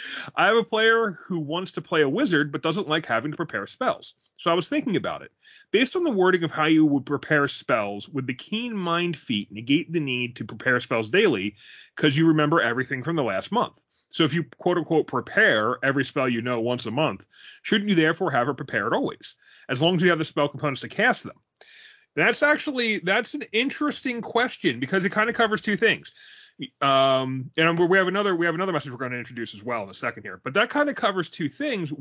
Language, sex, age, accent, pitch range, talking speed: English, male, 30-49, American, 135-190 Hz, 230 wpm